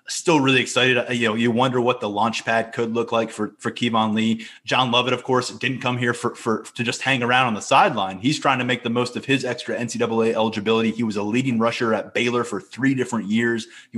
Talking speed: 245 wpm